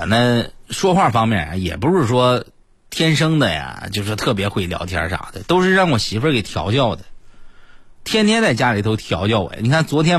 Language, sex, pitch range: Chinese, male, 95-150 Hz